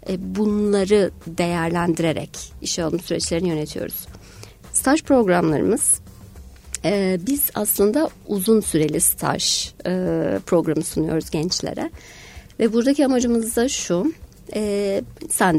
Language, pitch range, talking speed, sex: Turkish, 175-255 Hz, 95 wpm, female